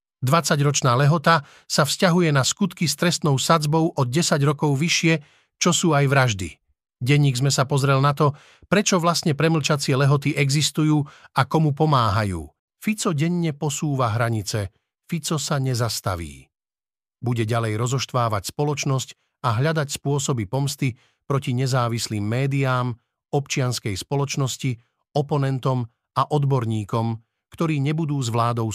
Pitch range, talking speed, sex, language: 120-150 Hz, 120 wpm, male, Slovak